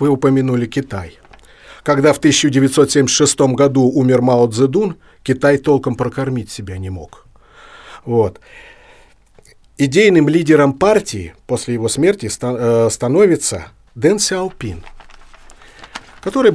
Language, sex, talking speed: Russian, male, 100 wpm